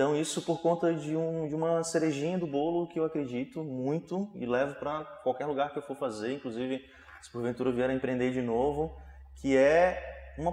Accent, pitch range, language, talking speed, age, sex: Brazilian, 130-160 Hz, Portuguese, 205 wpm, 20-39, male